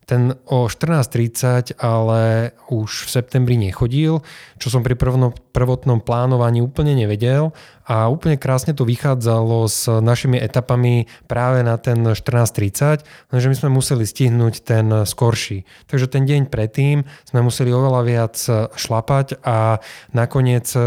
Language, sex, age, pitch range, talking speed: Slovak, male, 20-39, 105-125 Hz, 130 wpm